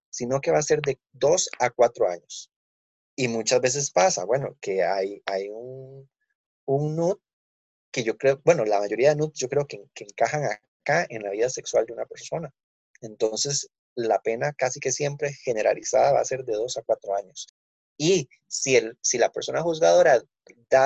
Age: 30-49